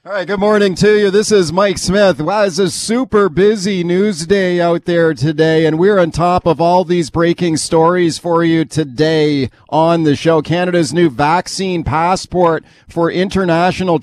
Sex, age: male, 40-59